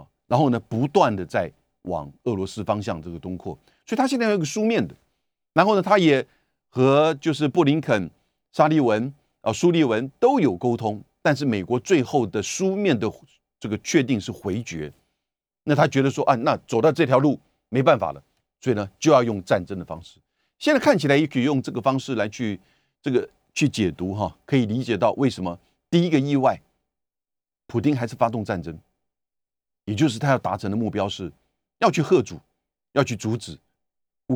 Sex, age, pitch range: male, 50-69, 100-155 Hz